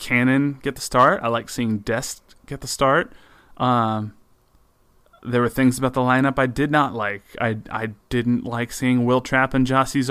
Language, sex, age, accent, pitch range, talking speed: English, male, 20-39, American, 115-130 Hz, 185 wpm